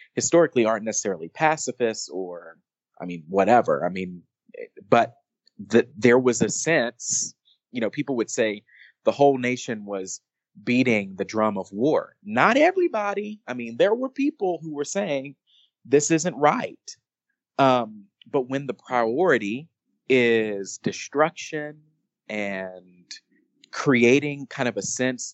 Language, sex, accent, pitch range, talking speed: English, male, American, 105-150 Hz, 130 wpm